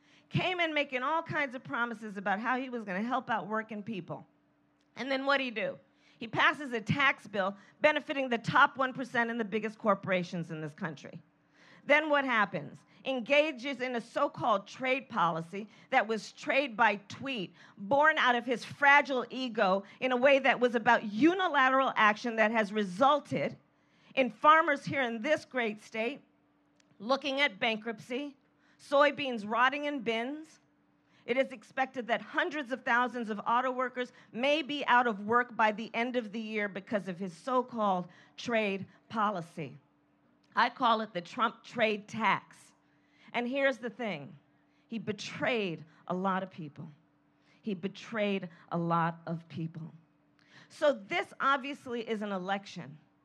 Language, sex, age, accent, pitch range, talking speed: English, female, 40-59, American, 195-260 Hz, 160 wpm